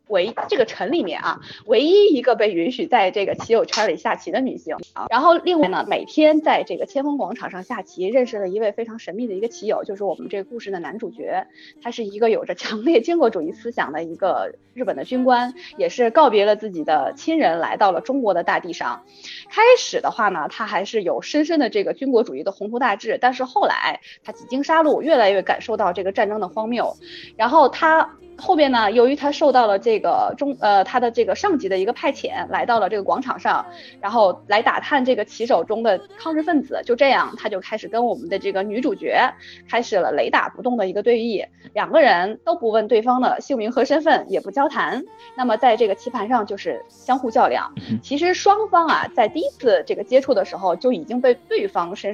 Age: 20-39